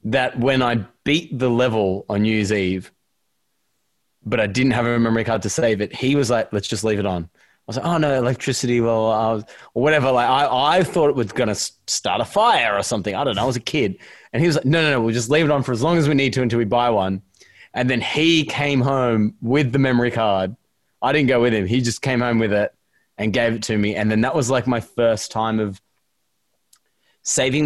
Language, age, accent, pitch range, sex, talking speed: English, 20-39, Australian, 105-130 Hz, male, 245 wpm